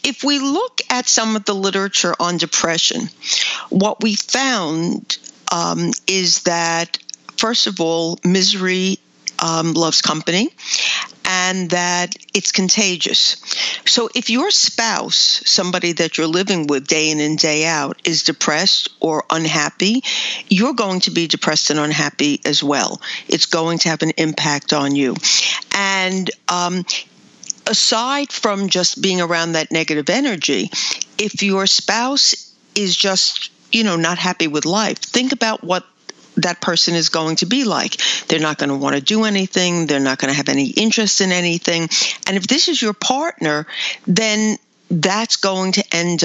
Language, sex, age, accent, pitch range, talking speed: English, female, 50-69, American, 165-215 Hz, 160 wpm